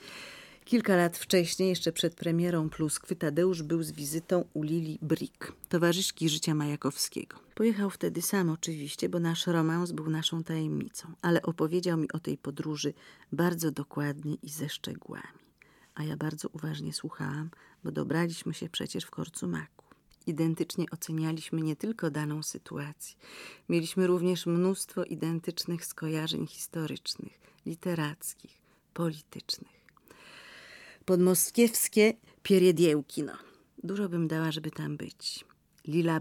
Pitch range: 155-175 Hz